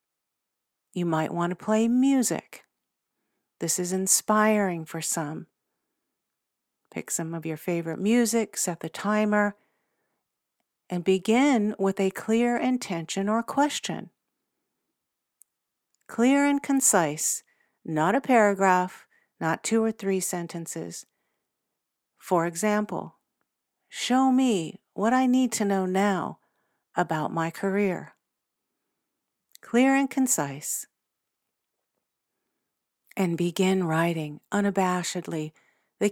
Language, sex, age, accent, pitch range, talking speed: English, female, 50-69, American, 170-225 Hz, 100 wpm